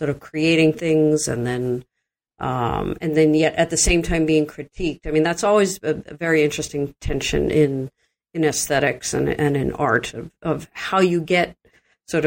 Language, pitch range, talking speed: English, 140-170 Hz, 185 wpm